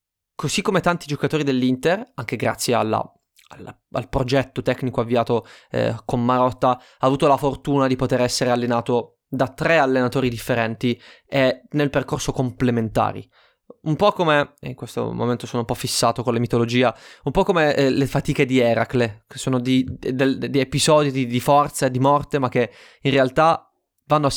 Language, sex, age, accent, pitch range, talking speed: Italian, male, 20-39, native, 120-140 Hz, 165 wpm